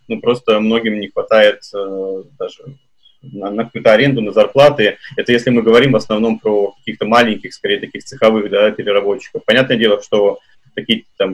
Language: Russian